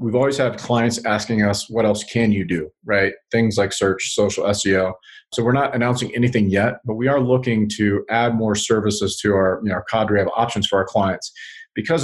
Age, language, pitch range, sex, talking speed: 30-49, English, 100-120 Hz, male, 215 wpm